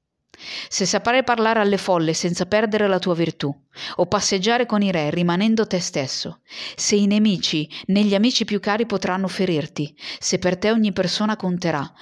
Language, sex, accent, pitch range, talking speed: Italian, female, native, 170-220 Hz, 165 wpm